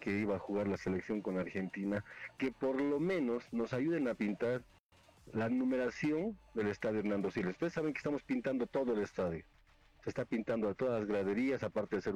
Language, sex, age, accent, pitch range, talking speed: Spanish, male, 50-69, Mexican, 100-130 Hz, 195 wpm